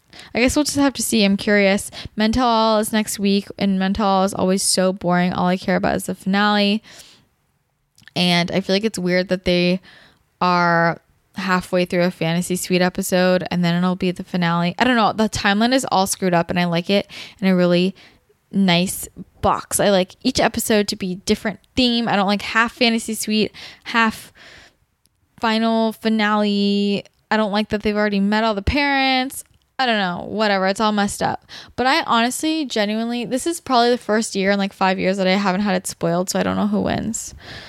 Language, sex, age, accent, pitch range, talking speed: English, female, 10-29, American, 185-220 Hz, 200 wpm